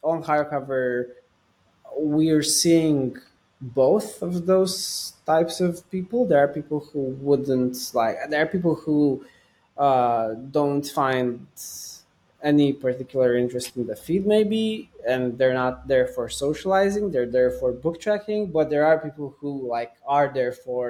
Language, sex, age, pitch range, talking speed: English, male, 20-39, 120-155 Hz, 150 wpm